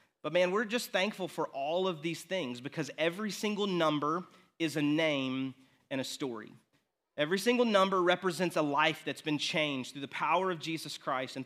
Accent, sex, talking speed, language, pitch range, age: American, male, 190 wpm, English, 140-170 Hz, 30-49